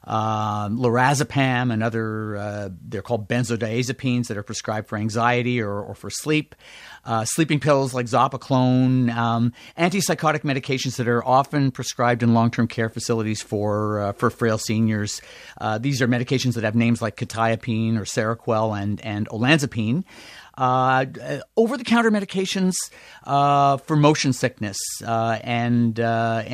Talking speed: 145 wpm